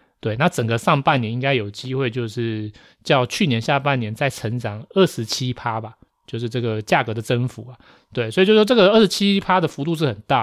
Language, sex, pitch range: Chinese, male, 115-145 Hz